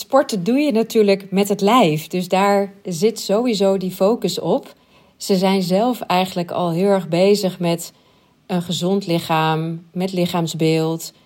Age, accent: 40-59, Dutch